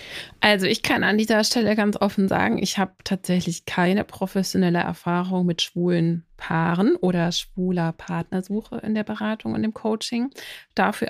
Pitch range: 190-215 Hz